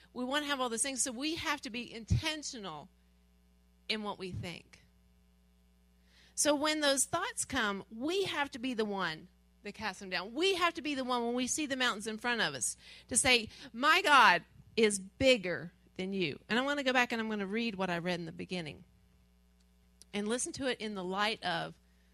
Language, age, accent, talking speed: English, 40-59, American, 215 wpm